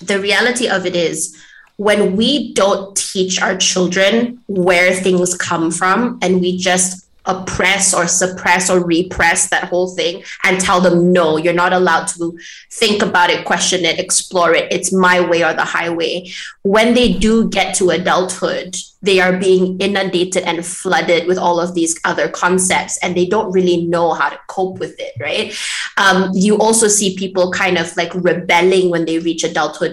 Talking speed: 180 wpm